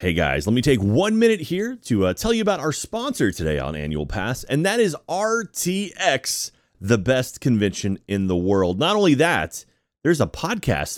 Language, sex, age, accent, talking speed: English, male, 30-49, American, 190 wpm